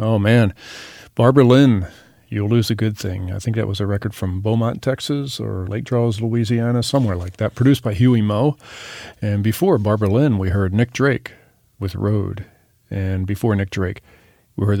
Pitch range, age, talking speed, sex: 100-120 Hz, 40-59, 180 wpm, male